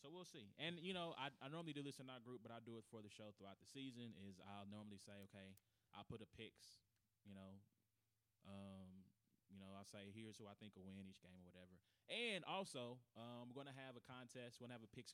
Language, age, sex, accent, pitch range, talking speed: English, 20-39, male, American, 100-125 Hz, 260 wpm